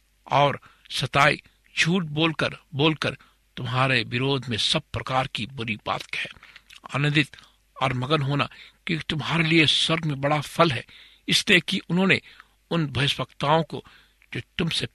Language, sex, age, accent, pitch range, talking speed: Hindi, male, 60-79, native, 130-165 Hz, 130 wpm